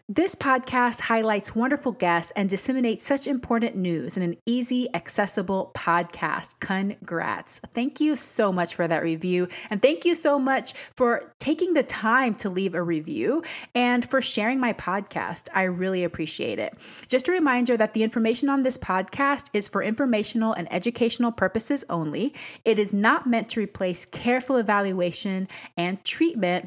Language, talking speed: English, 160 wpm